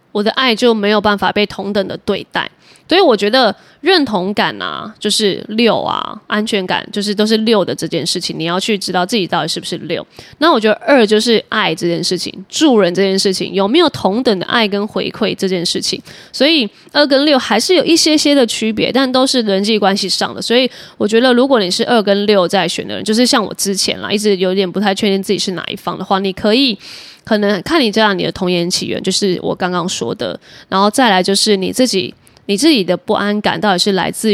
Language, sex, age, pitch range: Chinese, female, 20-39, 190-225 Hz